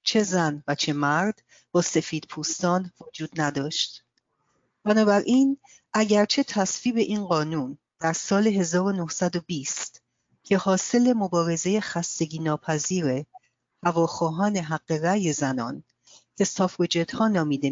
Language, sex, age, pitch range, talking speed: Persian, female, 40-59, 160-215 Hz, 100 wpm